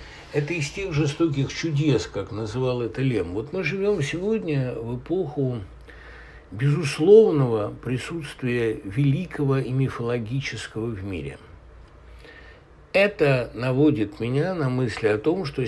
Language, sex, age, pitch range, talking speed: Russian, male, 60-79, 115-150 Hz, 115 wpm